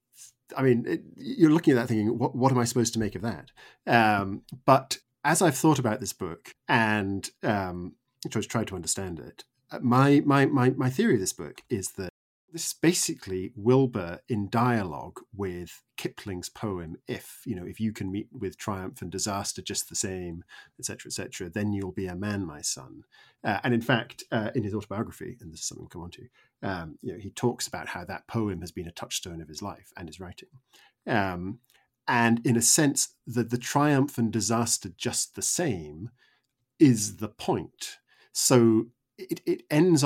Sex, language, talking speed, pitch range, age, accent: male, English, 200 wpm, 100-130 Hz, 40-59, British